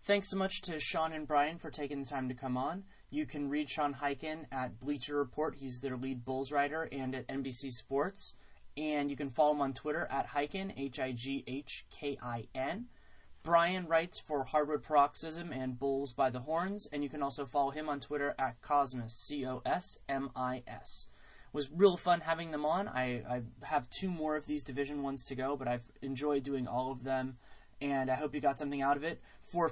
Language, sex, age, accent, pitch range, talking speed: English, male, 20-39, American, 130-155 Hz, 195 wpm